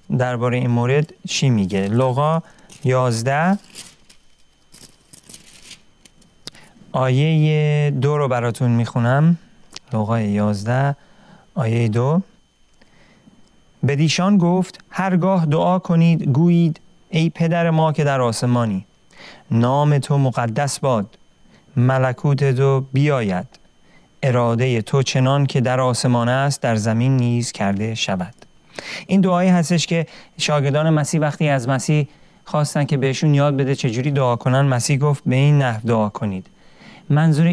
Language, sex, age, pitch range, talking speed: Persian, male, 40-59, 125-165 Hz, 115 wpm